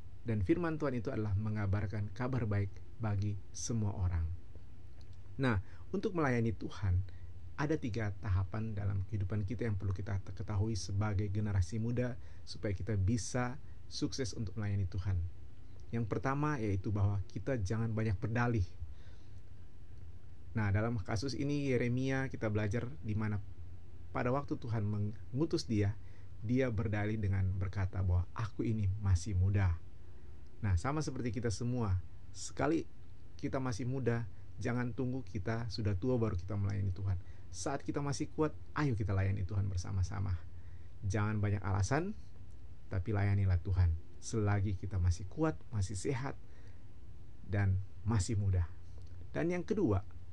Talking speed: 130 wpm